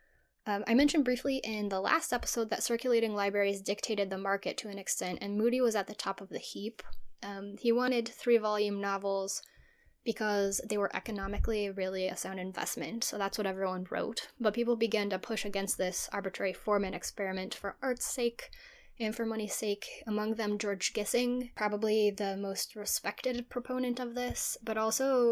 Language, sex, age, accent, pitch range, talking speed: English, female, 10-29, American, 195-240 Hz, 175 wpm